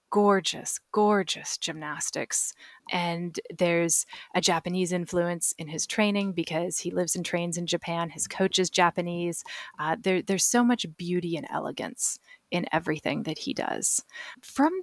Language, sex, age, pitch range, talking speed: English, female, 20-39, 175-205 Hz, 140 wpm